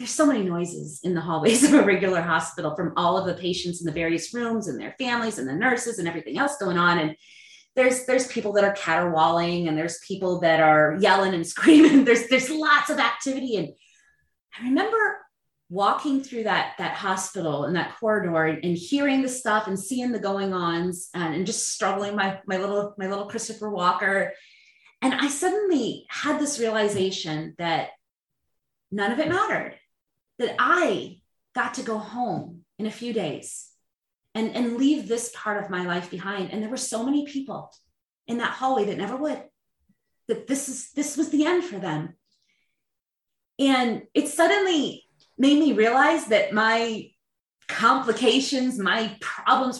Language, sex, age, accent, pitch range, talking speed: English, female, 30-49, American, 185-270 Hz, 170 wpm